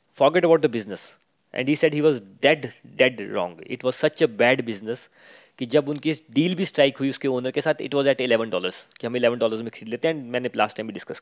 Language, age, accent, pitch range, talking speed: Hindi, 20-39, native, 130-160 Hz, 250 wpm